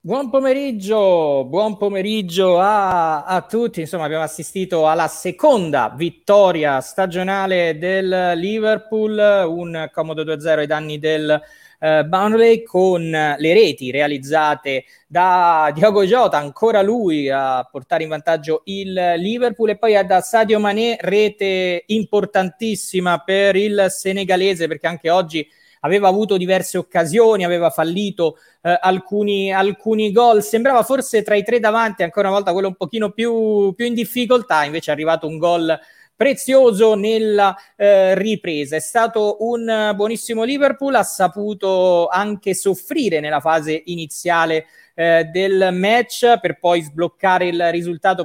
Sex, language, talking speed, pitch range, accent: male, Italian, 135 wpm, 170-215 Hz, native